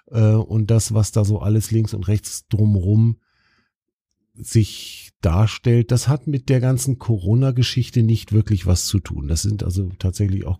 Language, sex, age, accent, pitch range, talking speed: German, male, 50-69, German, 100-115 Hz, 160 wpm